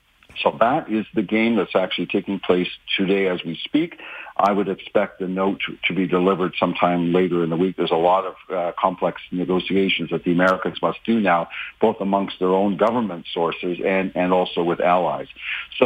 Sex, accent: male, American